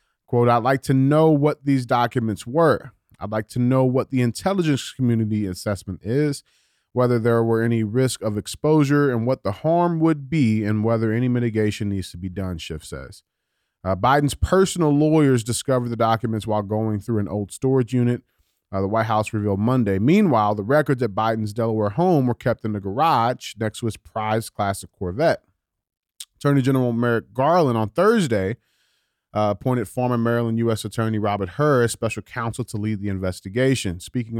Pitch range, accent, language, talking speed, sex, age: 100-130 Hz, American, English, 180 wpm, male, 30-49